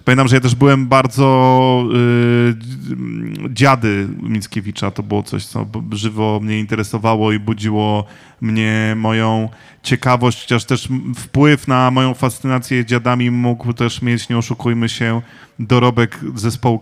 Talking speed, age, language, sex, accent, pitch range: 130 wpm, 20-39, Polish, male, native, 115-130 Hz